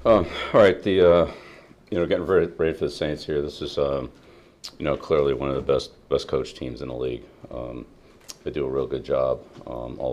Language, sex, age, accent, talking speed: English, male, 40-59, American, 225 wpm